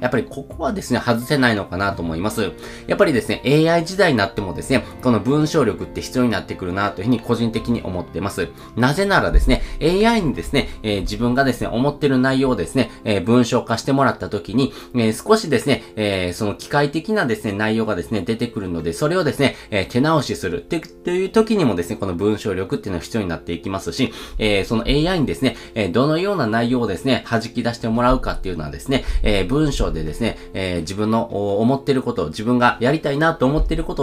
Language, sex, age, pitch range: Japanese, male, 20-39, 100-140 Hz